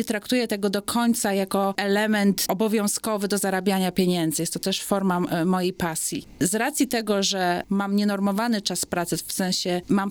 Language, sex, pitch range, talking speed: Polish, female, 190-225 Hz, 165 wpm